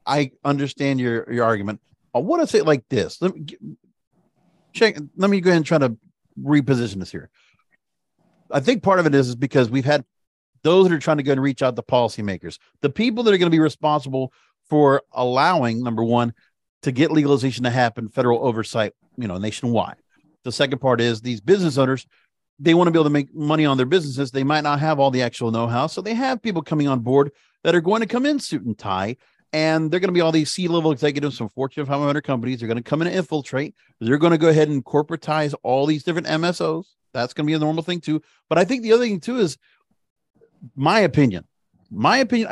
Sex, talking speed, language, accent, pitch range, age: male, 230 wpm, English, American, 130-170 Hz, 40-59